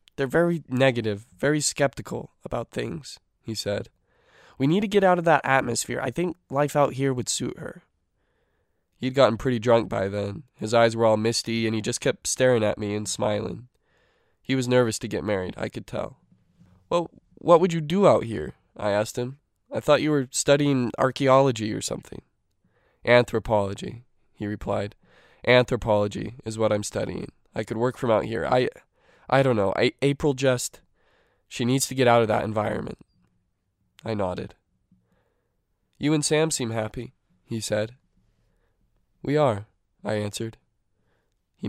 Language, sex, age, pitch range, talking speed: English, male, 20-39, 105-130 Hz, 165 wpm